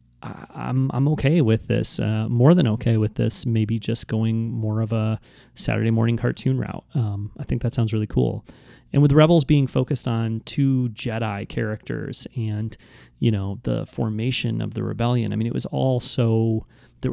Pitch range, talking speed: 110-125 Hz, 180 wpm